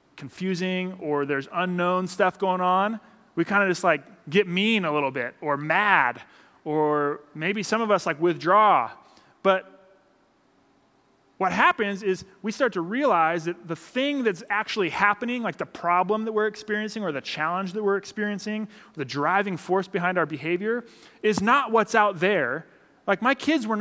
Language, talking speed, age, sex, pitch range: English, 170 wpm, 20-39, male, 150-215 Hz